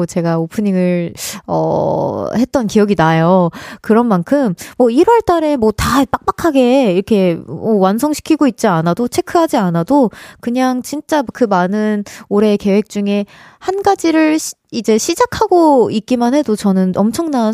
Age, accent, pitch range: 20-39, native, 195-280 Hz